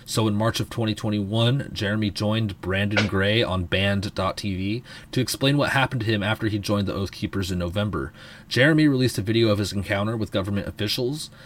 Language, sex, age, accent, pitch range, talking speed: English, male, 30-49, American, 95-115 Hz, 185 wpm